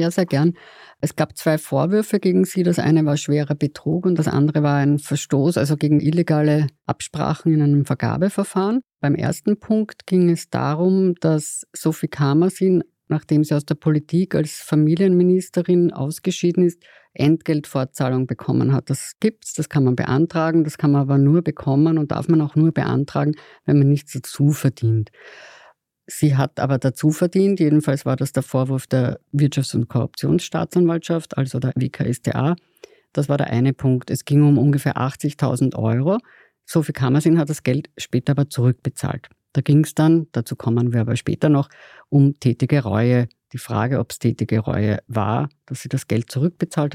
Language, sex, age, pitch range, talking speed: German, female, 50-69, 135-170 Hz, 170 wpm